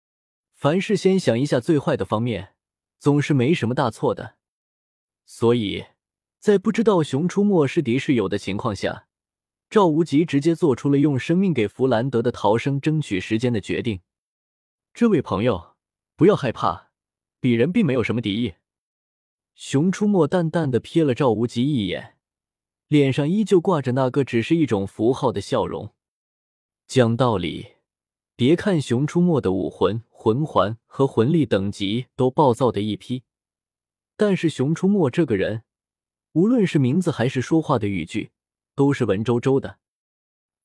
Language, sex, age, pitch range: Chinese, male, 20-39, 115-165 Hz